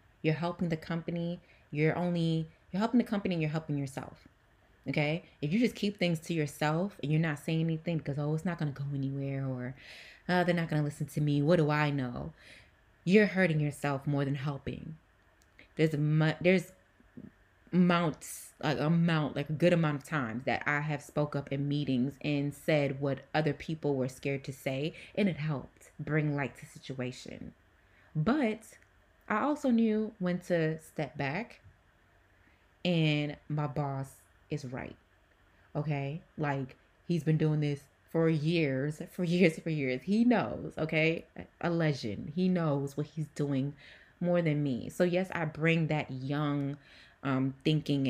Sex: female